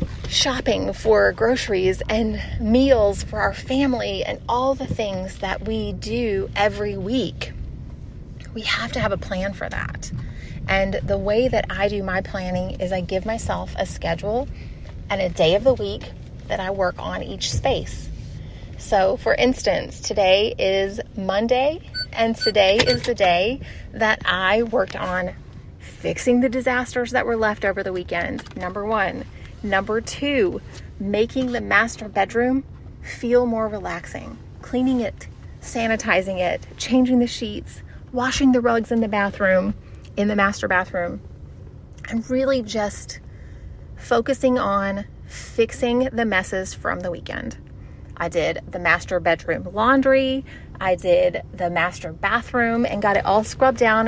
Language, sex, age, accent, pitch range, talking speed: English, female, 30-49, American, 195-245 Hz, 145 wpm